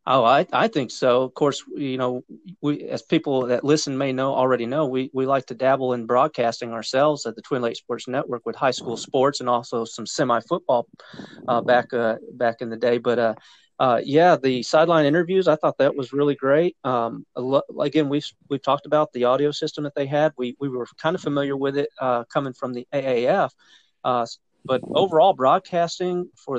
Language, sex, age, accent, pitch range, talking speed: English, male, 40-59, American, 125-160 Hz, 205 wpm